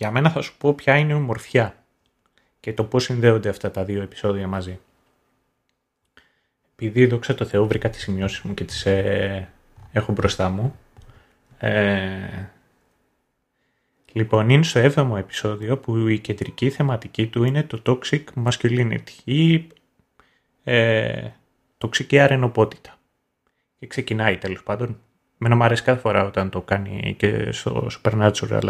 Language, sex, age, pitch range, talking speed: Greek, male, 30-49, 105-135 Hz, 140 wpm